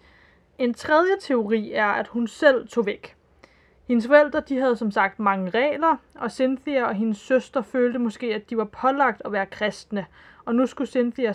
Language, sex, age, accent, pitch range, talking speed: Danish, female, 20-39, native, 205-250 Hz, 180 wpm